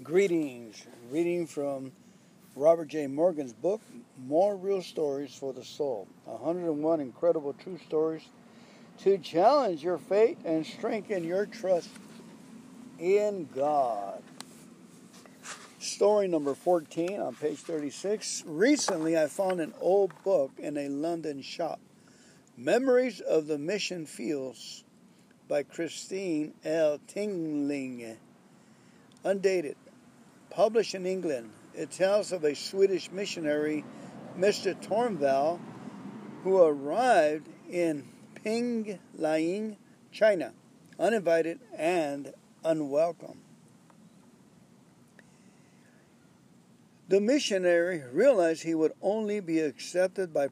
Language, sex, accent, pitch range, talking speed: English, male, American, 155-210 Hz, 95 wpm